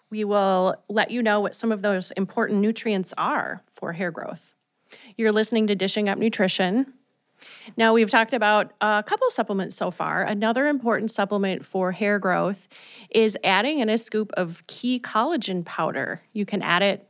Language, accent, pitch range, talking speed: English, American, 185-225 Hz, 170 wpm